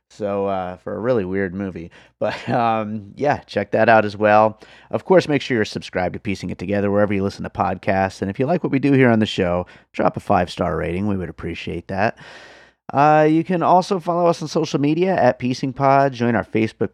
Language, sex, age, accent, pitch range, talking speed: English, male, 30-49, American, 100-135 Hz, 225 wpm